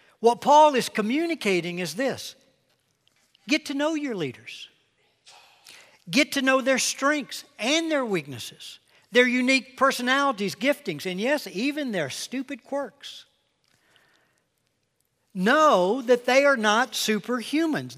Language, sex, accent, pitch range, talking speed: English, male, American, 155-235 Hz, 115 wpm